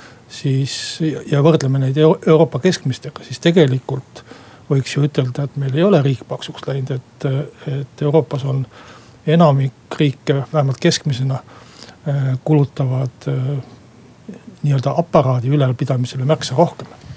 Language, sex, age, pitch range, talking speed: Finnish, male, 60-79, 130-160 Hz, 110 wpm